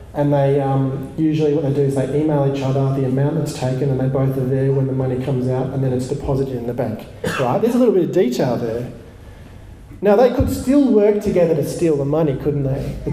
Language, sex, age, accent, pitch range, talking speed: English, male, 40-59, Australian, 135-195 Hz, 245 wpm